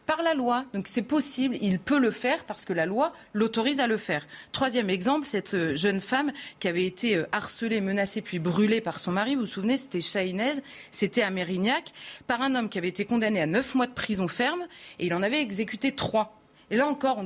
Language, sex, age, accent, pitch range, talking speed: French, female, 30-49, French, 190-245 Hz, 225 wpm